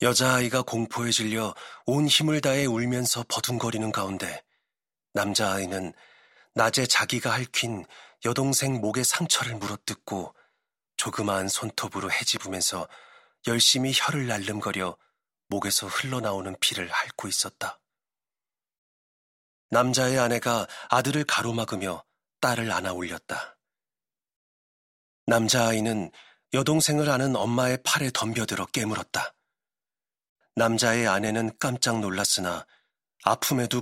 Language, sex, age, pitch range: Korean, male, 40-59, 105-130 Hz